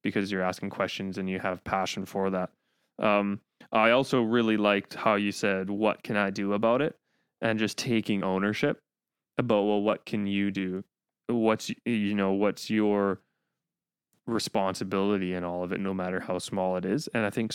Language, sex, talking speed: English, male, 180 wpm